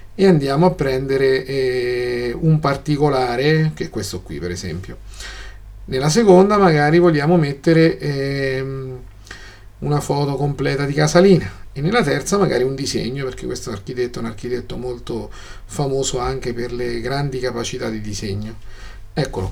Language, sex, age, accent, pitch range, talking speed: Italian, male, 40-59, native, 100-145 Hz, 140 wpm